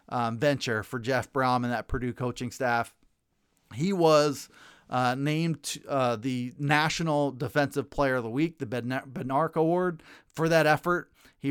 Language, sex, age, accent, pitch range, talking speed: English, male, 30-49, American, 130-180 Hz, 155 wpm